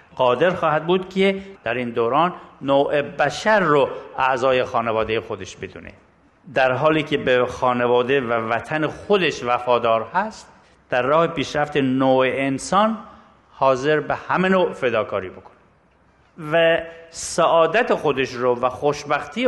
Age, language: 50-69, Persian